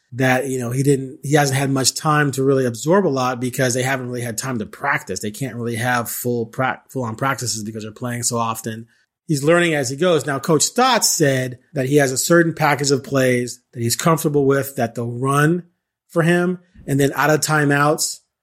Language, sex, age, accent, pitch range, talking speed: English, male, 30-49, American, 125-150 Hz, 220 wpm